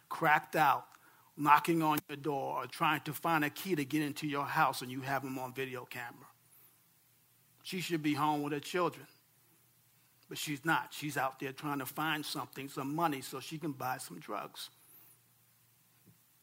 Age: 50-69